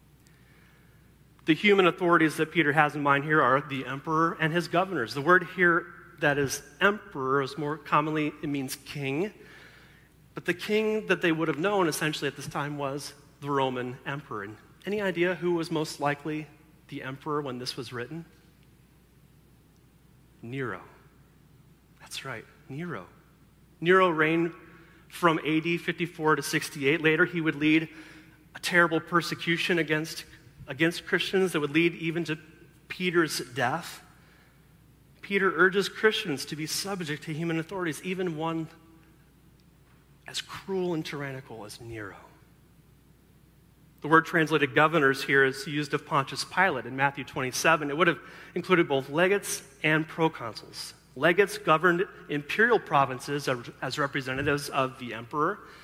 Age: 40-59